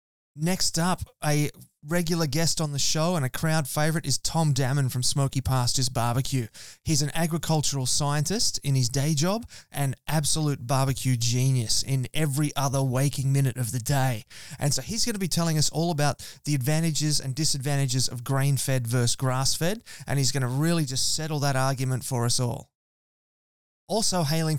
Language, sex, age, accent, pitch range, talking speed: English, male, 20-39, Australian, 130-155 Hz, 180 wpm